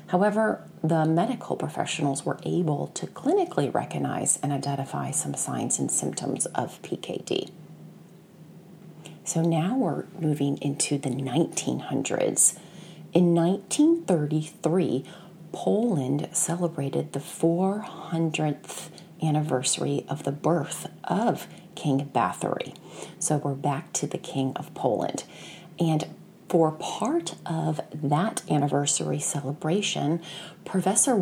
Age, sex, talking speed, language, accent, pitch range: 40-59, female, 100 wpm, English, American, 150-180 Hz